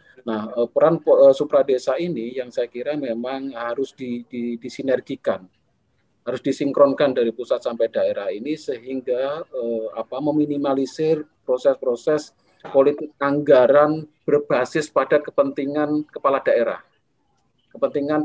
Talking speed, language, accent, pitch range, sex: 110 wpm, Indonesian, native, 115-150 Hz, male